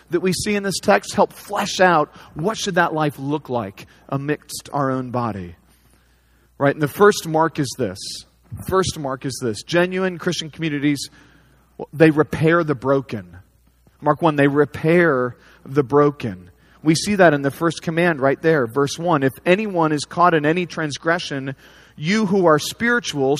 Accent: American